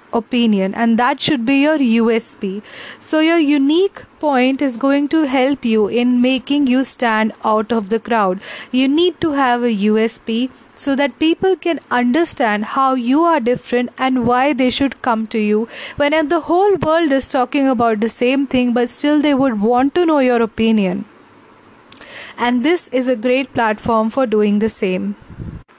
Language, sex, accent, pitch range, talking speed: English, female, Indian, 230-285 Hz, 175 wpm